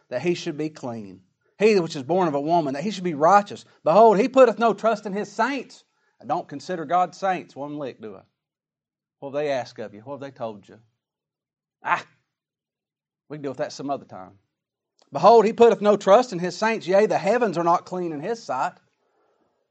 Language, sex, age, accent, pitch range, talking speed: English, male, 40-59, American, 120-190 Hz, 215 wpm